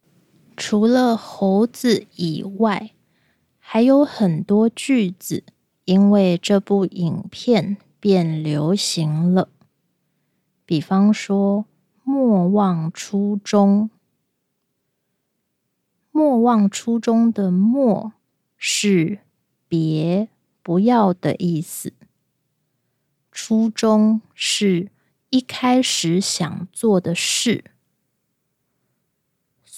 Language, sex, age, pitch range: Japanese, female, 20-39, 180-220 Hz